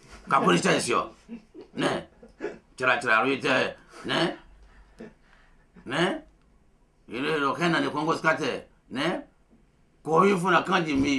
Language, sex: Japanese, male